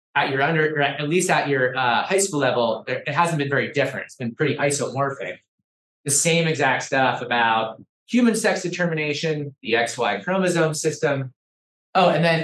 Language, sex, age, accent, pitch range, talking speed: English, male, 20-39, American, 130-170 Hz, 170 wpm